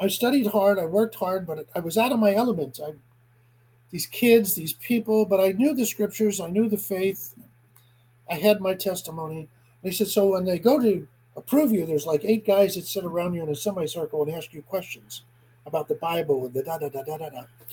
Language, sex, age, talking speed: English, male, 50-69, 205 wpm